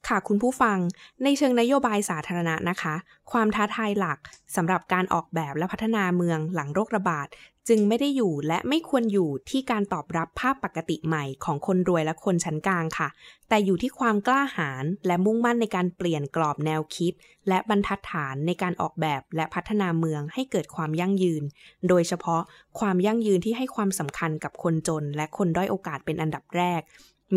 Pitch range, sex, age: 160-215 Hz, female, 20-39